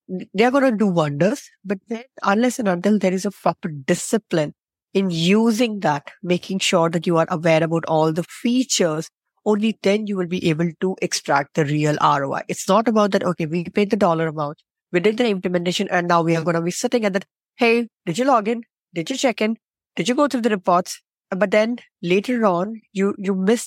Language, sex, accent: English, female, Indian